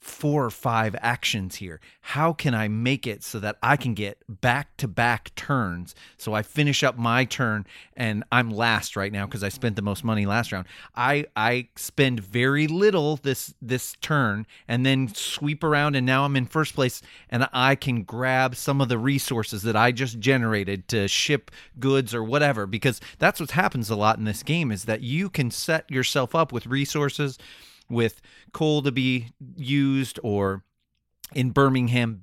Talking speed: 180 wpm